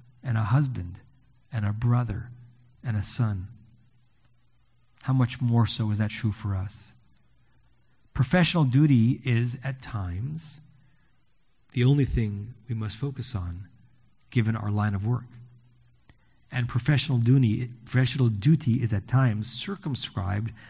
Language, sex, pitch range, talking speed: English, male, 110-140 Hz, 130 wpm